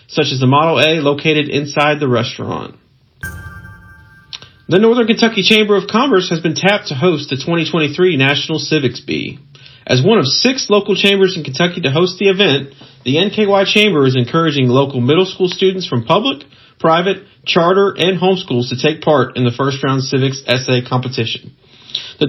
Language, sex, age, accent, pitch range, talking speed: English, male, 40-59, American, 130-185 Hz, 170 wpm